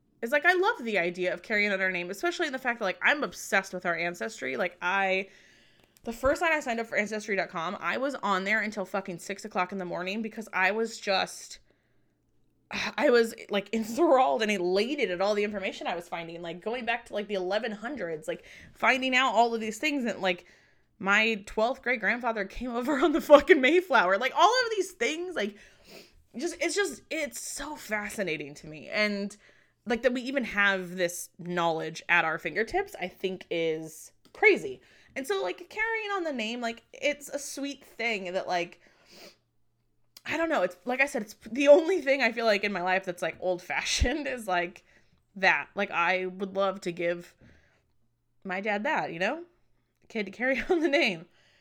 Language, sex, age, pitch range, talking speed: English, female, 20-39, 185-275 Hz, 200 wpm